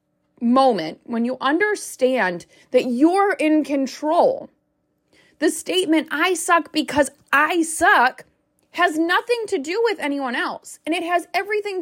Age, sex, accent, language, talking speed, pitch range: 20-39, female, American, English, 130 wpm, 235-325 Hz